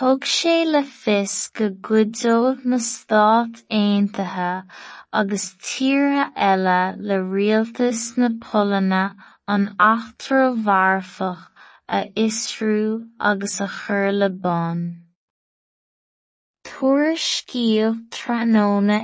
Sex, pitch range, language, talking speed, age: female, 195-230 Hz, English, 65 wpm, 20-39